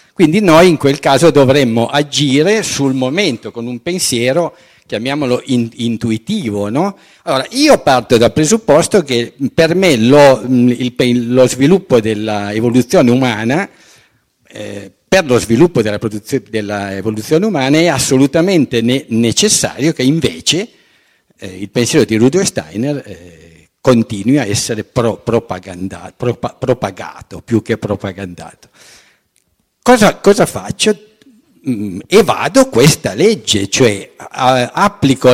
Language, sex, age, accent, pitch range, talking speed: Italian, male, 50-69, native, 110-160 Hz, 115 wpm